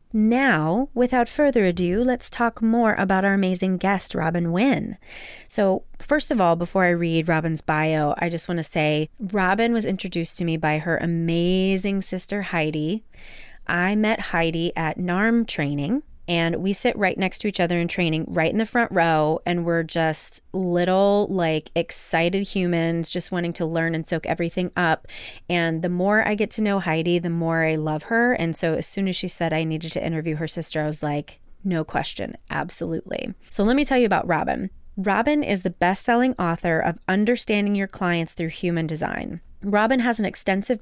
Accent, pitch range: American, 165-210 Hz